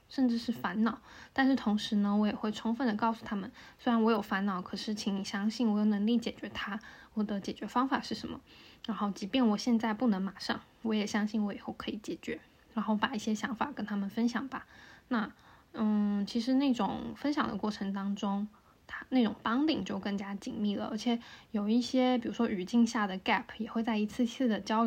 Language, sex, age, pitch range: Chinese, female, 10-29, 210-250 Hz